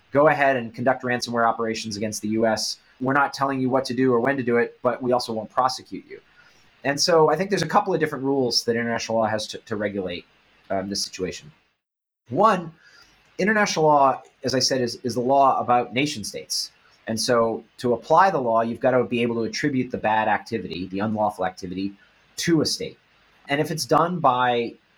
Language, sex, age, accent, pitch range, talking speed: English, male, 30-49, American, 115-145 Hz, 210 wpm